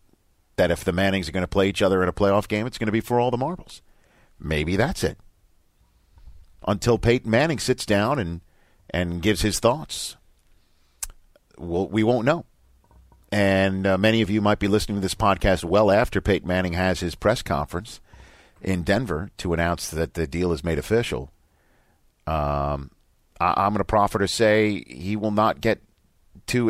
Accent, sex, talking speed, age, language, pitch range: American, male, 180 wpm, 50-69, English, 85-105 Hz